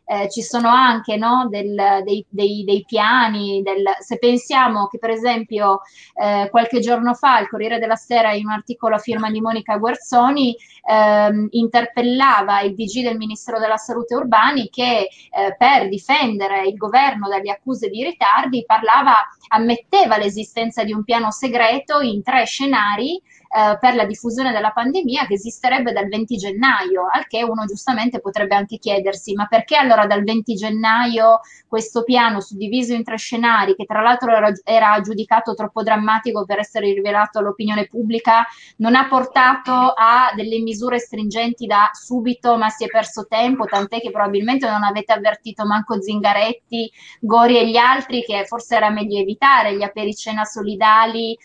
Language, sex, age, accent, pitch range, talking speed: Italian, female, 20-39, native, 210-240 Hz, 160 wpm